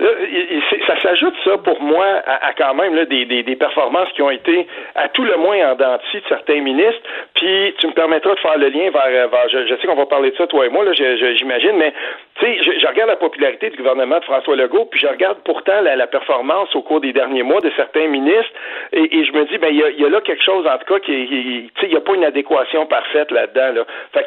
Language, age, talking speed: French, 60-79, 265 wpm